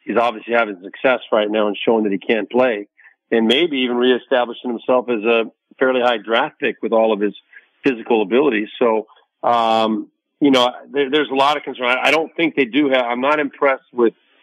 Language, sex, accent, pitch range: English, male, American, 110-135 Hz